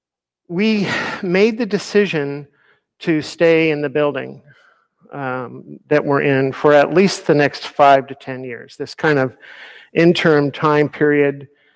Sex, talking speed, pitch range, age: male, 145 wpm, 145-175 Hz, 50-69